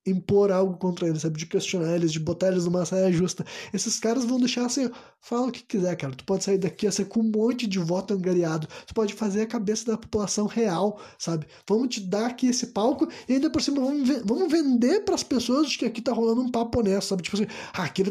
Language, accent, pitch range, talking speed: Portuguese, Brazilian, 195-260 Hz, 235 wpm